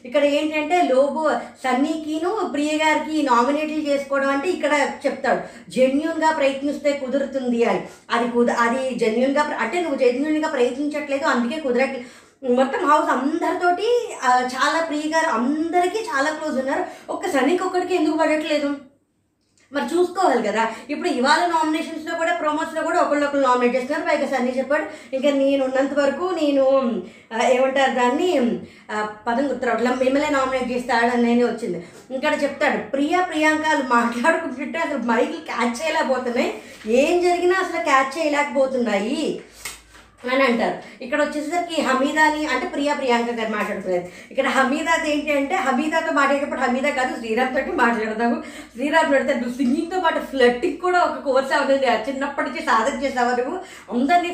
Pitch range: 255-310 Hz